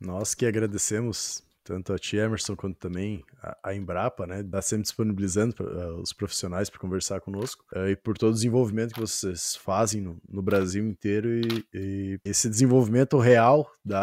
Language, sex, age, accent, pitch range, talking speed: Portuguese, male, 20-39, Brazilian, 95-115 Hz, 185 wpm